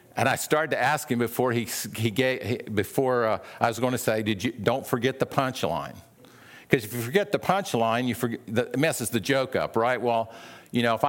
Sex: male